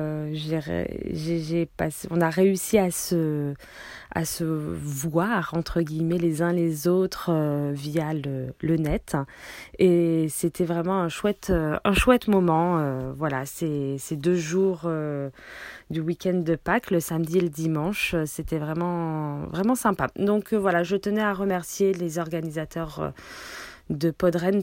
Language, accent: French, French